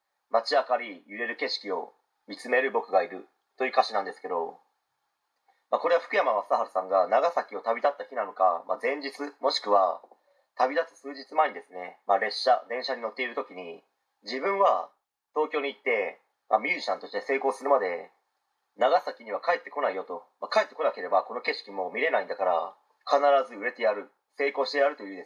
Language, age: Japanese, 40-59